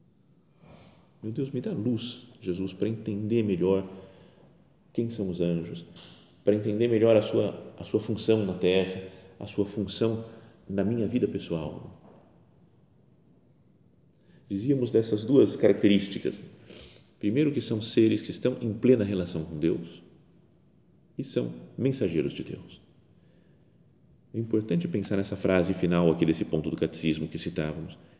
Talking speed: 130 wpm